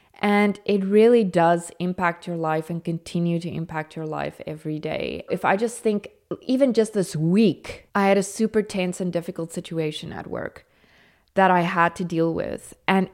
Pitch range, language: 165-195 Hz, English